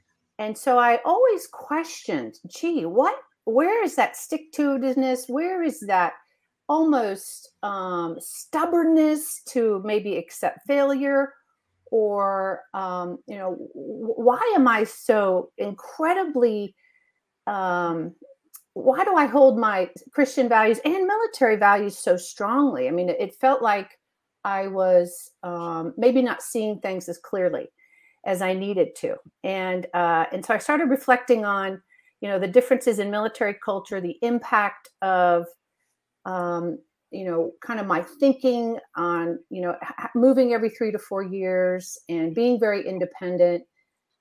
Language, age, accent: English, 40-59, American